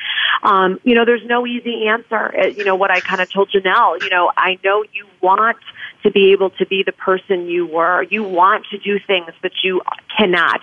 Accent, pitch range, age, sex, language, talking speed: American, 180-210 Hz, 40-59, female, English, 220 wpm